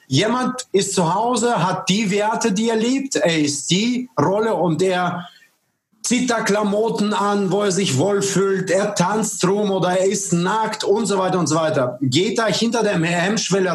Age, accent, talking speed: 30-49, German, 185 wpm